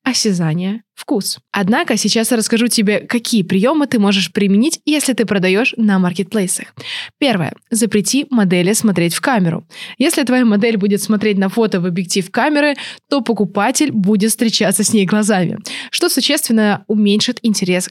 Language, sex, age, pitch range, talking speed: Russian, female, 20-39, 190-235 Hz, 145 wpm